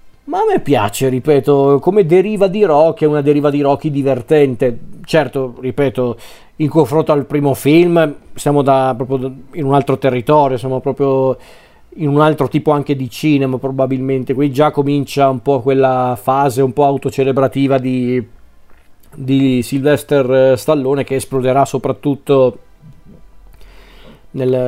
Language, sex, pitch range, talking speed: Italian, male, 125-140 Hz, 140 wpm